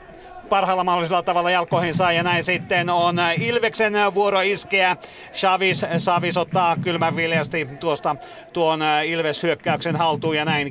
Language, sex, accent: Finnish, male, native